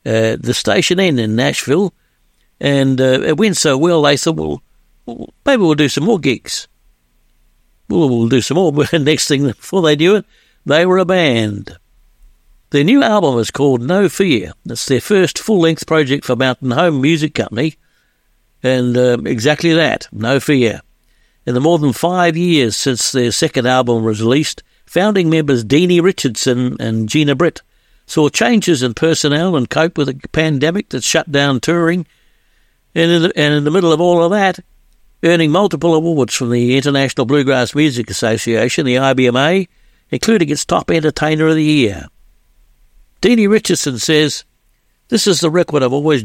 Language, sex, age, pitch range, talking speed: English, male, 60-79, 125-170 Hz, 165 wpm